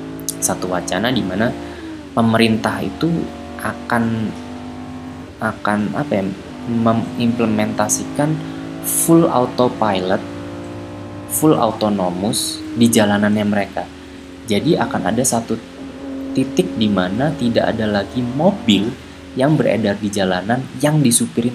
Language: Indonesian